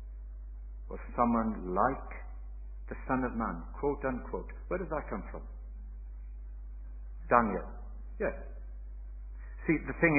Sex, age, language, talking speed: male, 60-79, English, 110 wpm